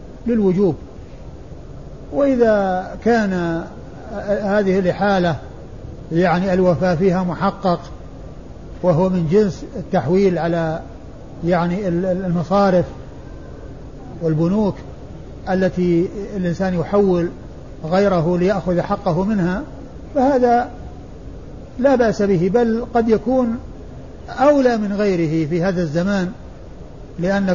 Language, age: Arabic, 60-79